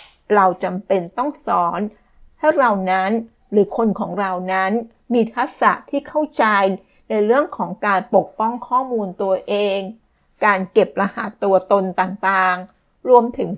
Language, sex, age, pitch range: Thai, female, 60-79, 190-230 Hz